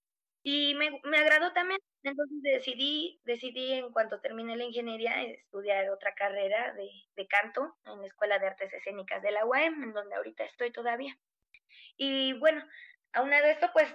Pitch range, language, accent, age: 210-270 Hz, Spanish, Mexican, 20-39